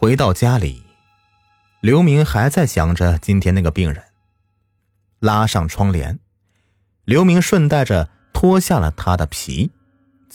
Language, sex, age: Chinese, male, 30-49